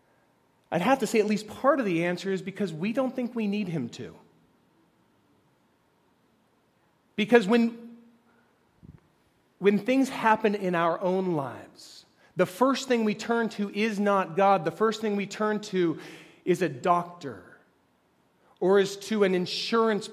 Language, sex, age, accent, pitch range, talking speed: English, male, 30-49, American, 170-210 Hz, 150 wpm